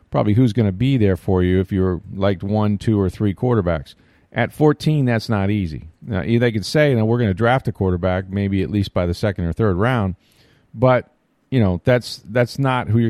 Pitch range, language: 100-125 Hz, English